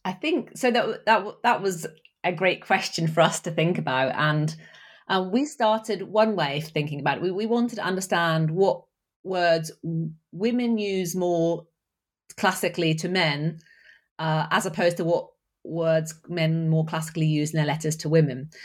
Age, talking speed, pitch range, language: 30-49, 170 wpm, 160-205 Hz, English